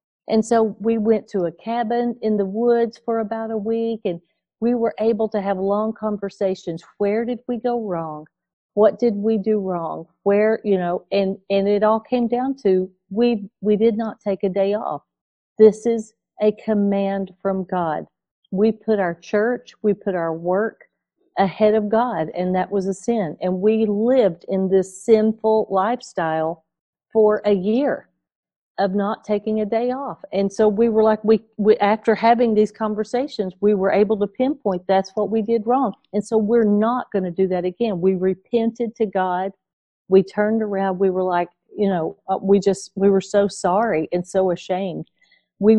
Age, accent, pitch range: 50-69, American, 190-225 Hz